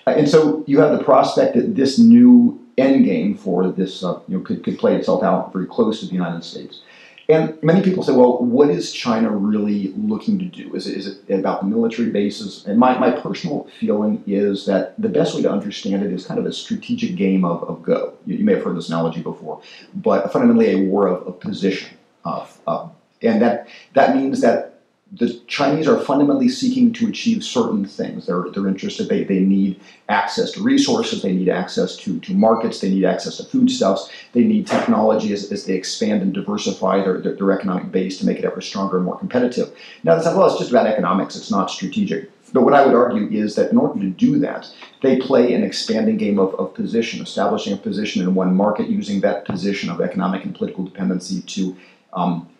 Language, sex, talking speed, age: English, male, 215 wpm, 40-59